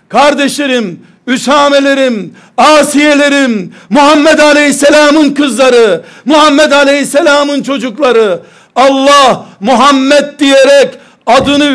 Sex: male